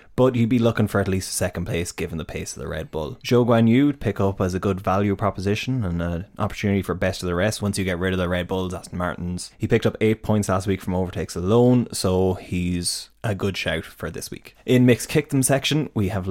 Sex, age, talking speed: male, 20-39, 260 wpm